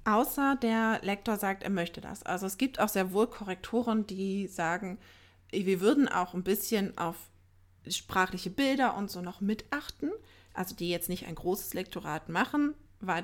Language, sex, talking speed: German, female, 170 wpm